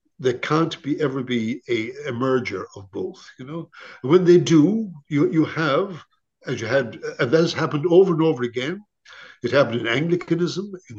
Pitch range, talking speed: 125-170 Hz, 180 wpm